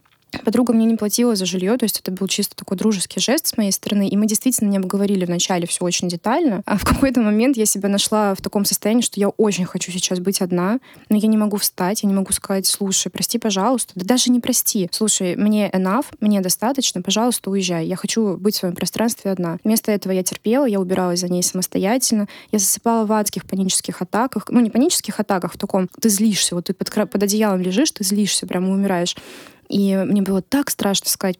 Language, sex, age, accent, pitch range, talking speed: Russian, female, 20-39, native, 190-220 Hz, 215 wpm